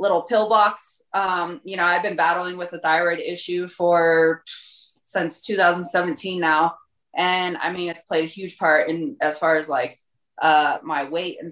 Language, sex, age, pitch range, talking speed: English, female, 20-39, 155-175 Hz, 175 wpm